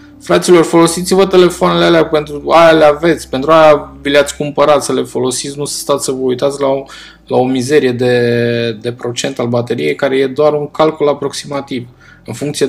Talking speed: 185 wpm